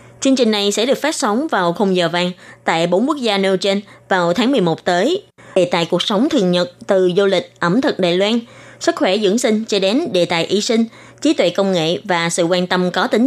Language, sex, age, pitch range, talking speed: Vietnamese, female, 20-39, 180-235 Hz, 240 wpm